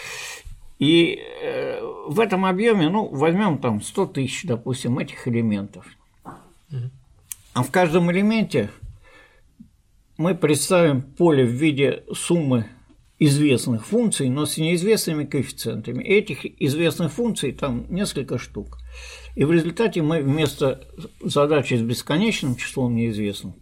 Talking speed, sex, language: 115 wpm, male, Russian